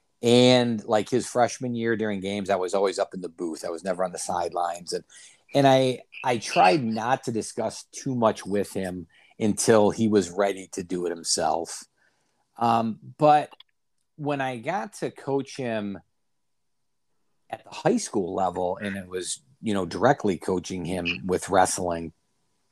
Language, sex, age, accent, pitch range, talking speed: English, male, 50-69, American, 95-120 Hz, 165 wpm